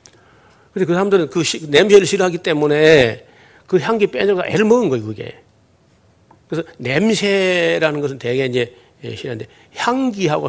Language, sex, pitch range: Korean, male, 125-175 Hz